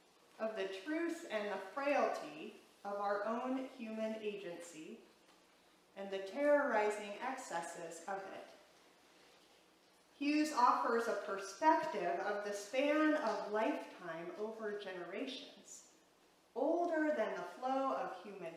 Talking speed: 110 wpm